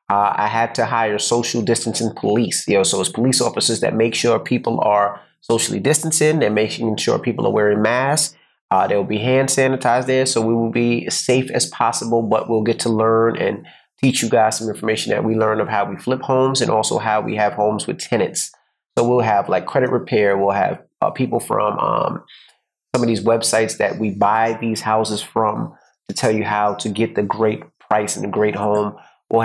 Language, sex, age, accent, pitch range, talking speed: English, male, 30-49, American, 105-120 Hz, 215 wpm